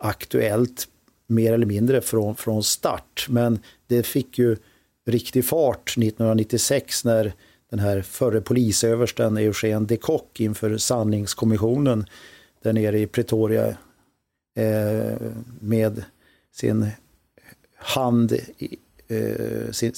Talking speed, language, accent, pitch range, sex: 95 wpm, Swedish, native, 110-120 Hz, male